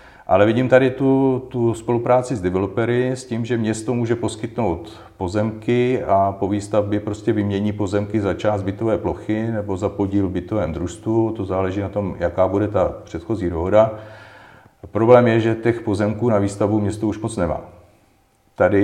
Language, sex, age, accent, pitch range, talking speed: Czech, male, 40-59, native, 90-110 Hz, 160 wpm